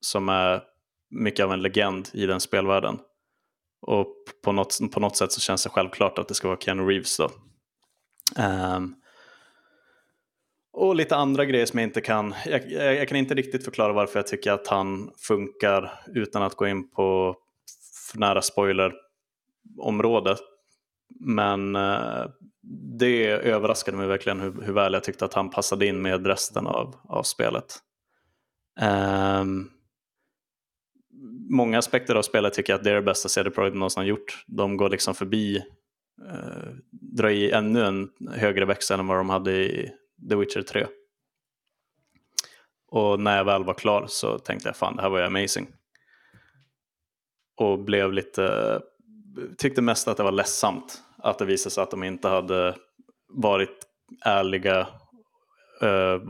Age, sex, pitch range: 20-39, male, 95-115 Hz